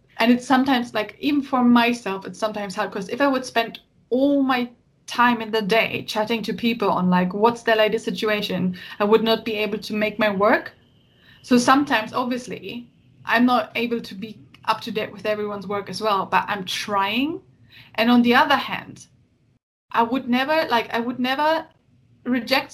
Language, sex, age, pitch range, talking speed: English, female, 20-39, 220-280 Hz, 185 wpm